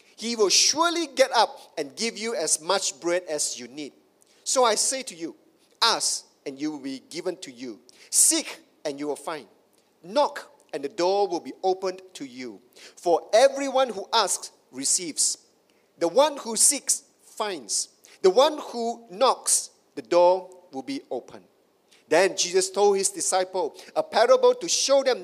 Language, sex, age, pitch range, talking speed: English, male, 50-69, 190-305 Hz, 165 wpm